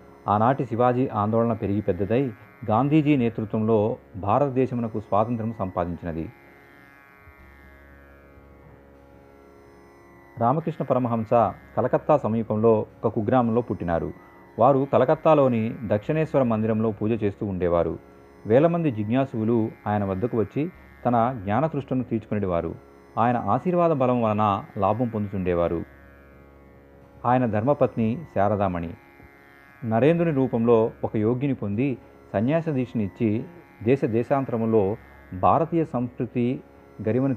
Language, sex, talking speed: Telugu, male, 85 wpm